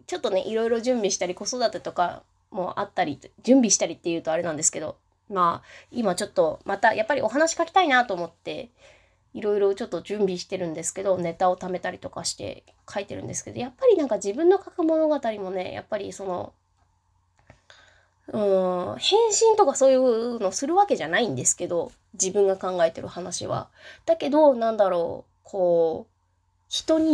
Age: 20-39